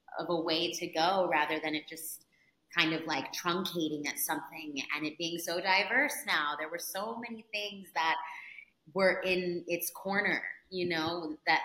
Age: 30-49